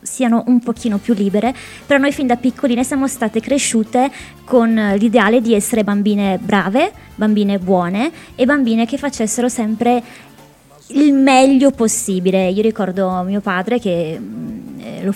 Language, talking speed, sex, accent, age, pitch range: Italian, 140 wpm, female, native, 20-39, 205-255 Hz